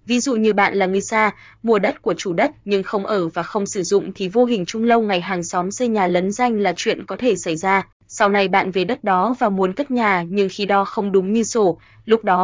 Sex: female